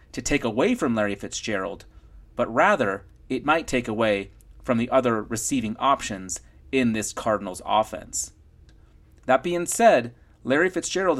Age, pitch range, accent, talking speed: 30-49, 120-160 Hz, American, 140 wpm